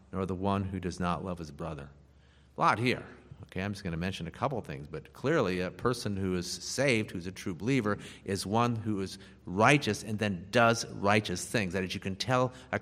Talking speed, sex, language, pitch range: 230 wpm, male, English, 90-120 Hz